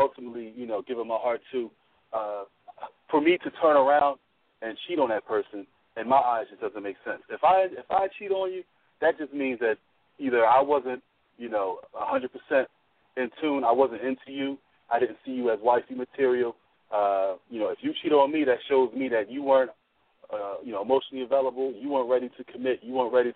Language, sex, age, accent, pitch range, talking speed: English, male, 30-49, American, 120-155 Hz, 210 wpm